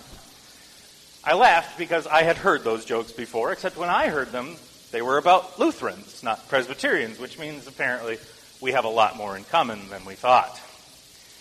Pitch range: 110-185 Hz